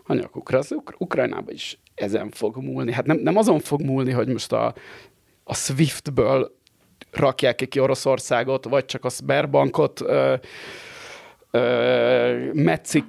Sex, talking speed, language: male, 120 wpm, Hungarian